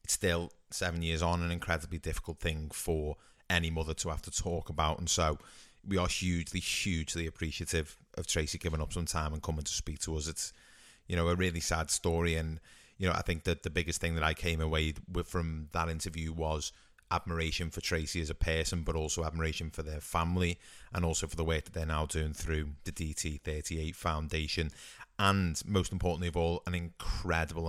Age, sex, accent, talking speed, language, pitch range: 30-49, male, British, 200 wpm, English, 75-85 Hz